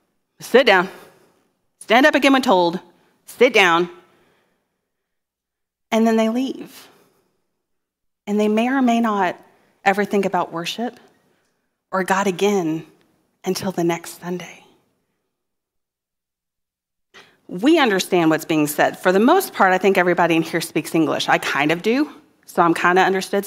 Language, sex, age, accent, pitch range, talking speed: English, female, 30-49, American, 170-215 Hz, 140 wpm